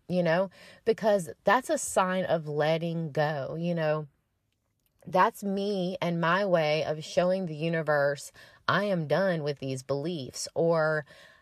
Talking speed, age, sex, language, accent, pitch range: 140 wpm, 30-49, female, English, American, 140-185 Hz